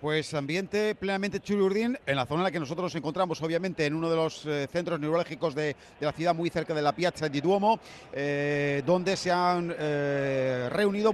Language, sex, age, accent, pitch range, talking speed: Spanish, male, 40-59, Spanish, 160-195 Hz, 205 wpm